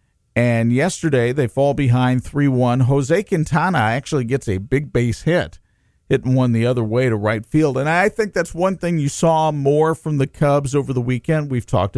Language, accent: English, American